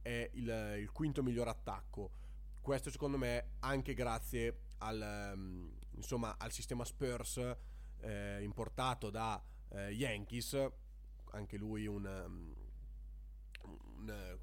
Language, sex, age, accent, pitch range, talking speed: Italian, male, 20-39, native, 100-135 Hz, 105 wpm